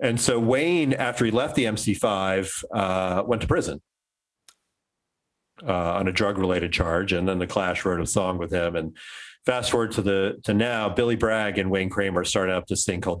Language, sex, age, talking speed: English, male, 40-59, 200 wpm